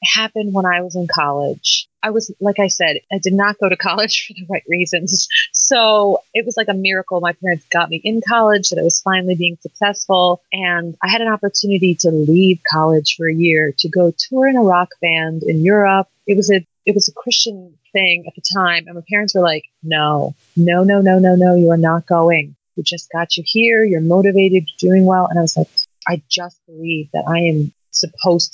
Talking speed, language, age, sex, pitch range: 220 wpm, English, 30-49, female, 170-200 Hz